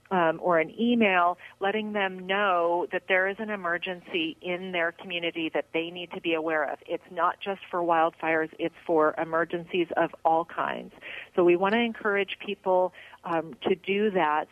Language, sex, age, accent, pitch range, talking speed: English, female, 40-59, American, 170-210 Hz, 180 wpm